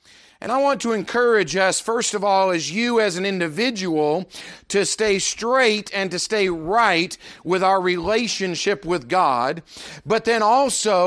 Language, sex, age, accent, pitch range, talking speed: English, male, 40-59, American, 175-225 Hz, 155 wpm